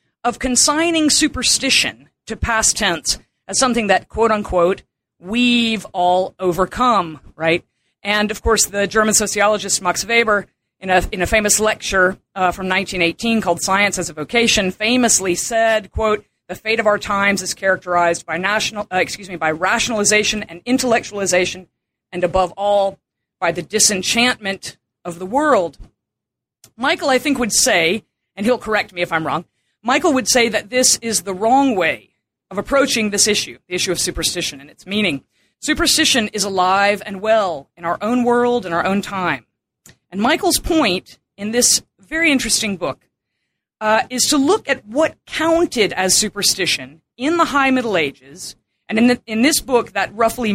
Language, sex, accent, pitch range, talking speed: English, female, American, 185-240 Hz, 165 wpm